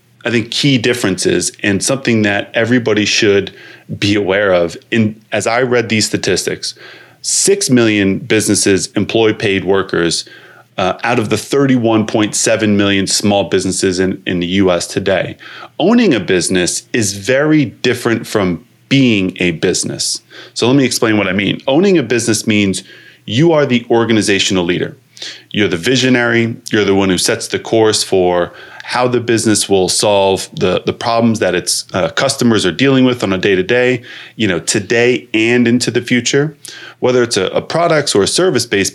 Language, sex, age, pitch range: English, male, 30-49, 95-125 Hz